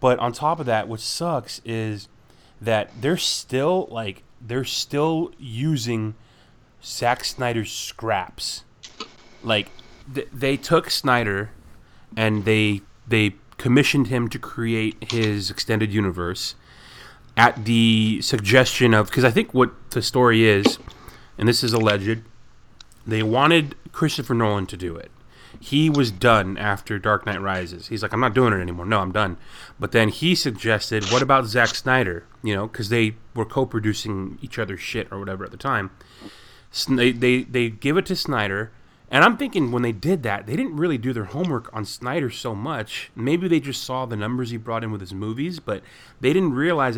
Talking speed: 170 wpm